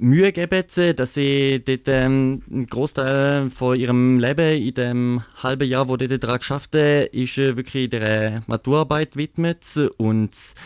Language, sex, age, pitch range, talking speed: English, male, 20-39, 125-150 Hz, 135 wpm